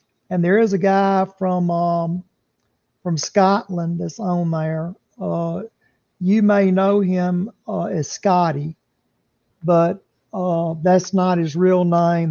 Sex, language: male, English